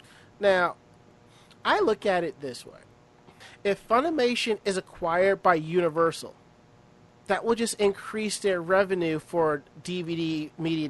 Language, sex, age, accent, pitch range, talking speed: English, male, 40-59, American, 160-195 Hz, 120 wpm